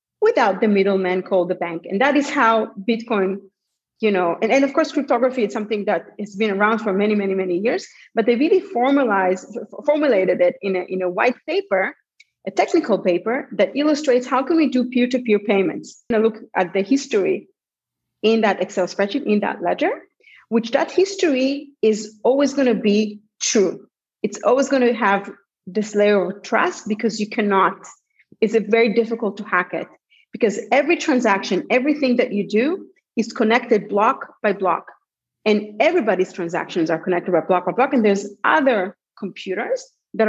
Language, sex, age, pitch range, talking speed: English, female, 30-49, 195-255 Hz, 175 wpm